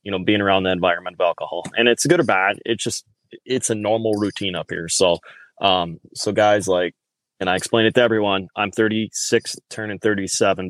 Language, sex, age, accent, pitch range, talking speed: English, male, 20-39, American, 95-115 Hz, 200 wpm